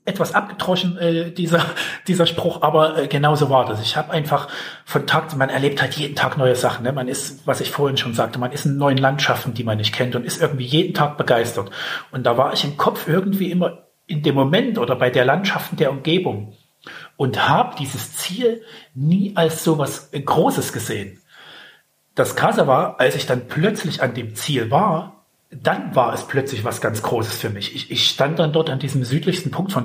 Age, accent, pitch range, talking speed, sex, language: 40-59, German, 125-165 Hz, 205 wpm, male, German